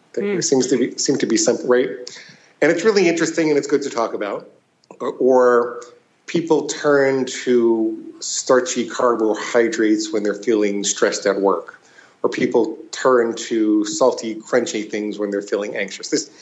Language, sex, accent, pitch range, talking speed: English, male, American, 105-170 Hz, 155 wpm